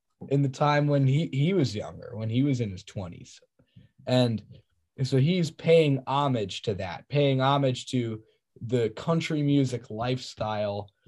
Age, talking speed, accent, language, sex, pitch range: 10-29, 150 wpm, American, English, male, 115-145 Hz